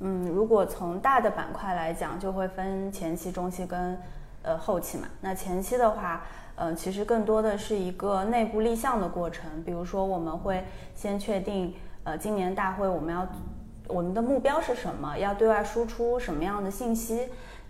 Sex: female